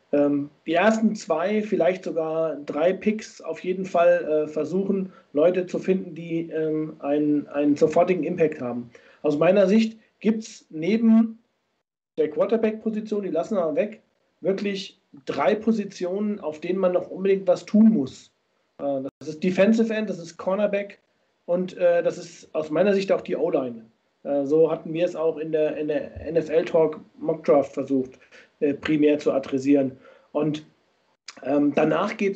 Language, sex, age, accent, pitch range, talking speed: German, male, 40-59, German, 155-200 Hz, 145 wpm